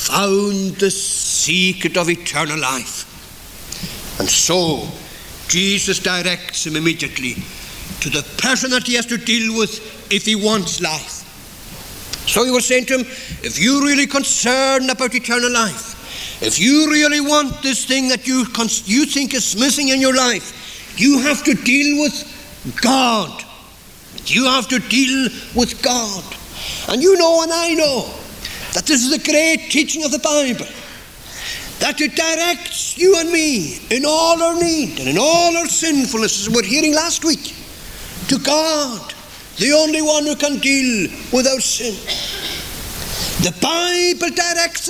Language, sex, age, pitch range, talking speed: English, male, 60-79, 215-295 Hz, 155 wpm